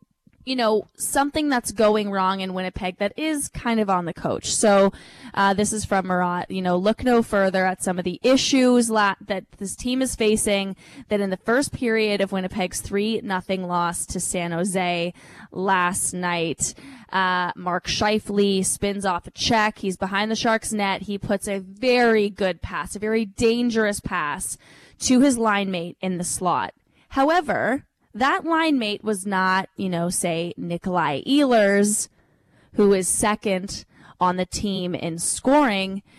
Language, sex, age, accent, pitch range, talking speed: English, female, 20-39, American, 180-220 Hz, 165 wpm